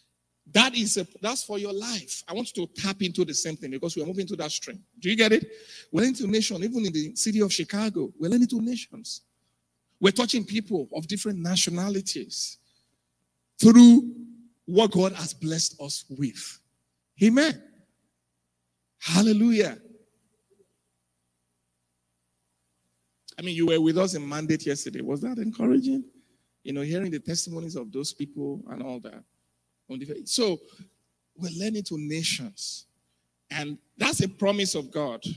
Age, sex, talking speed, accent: 50-69, male, 150 wpm, Nigerian